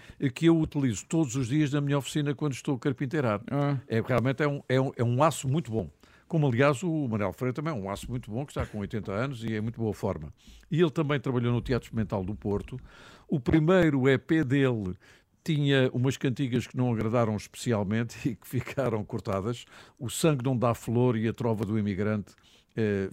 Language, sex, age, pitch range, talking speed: Portuguese, male, 50-69, 110-140 Hz, 205 wpm